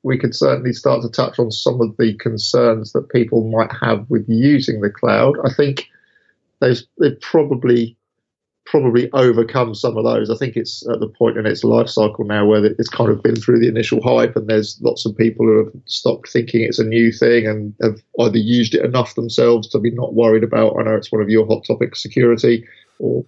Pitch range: 110-120 Hz